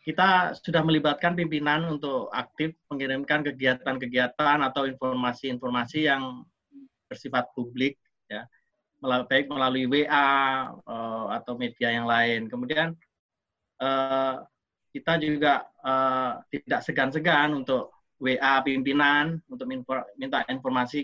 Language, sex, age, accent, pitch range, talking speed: Indonesian, male, 30-49, native, 130-155 Hz, 105 wpm